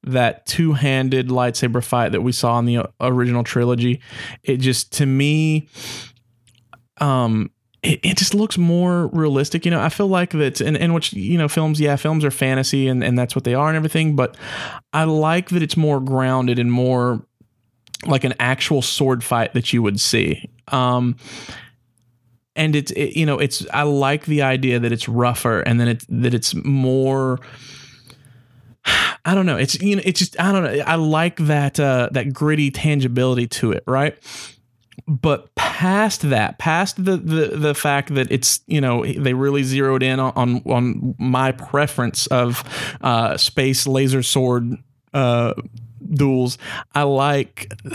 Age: 30-49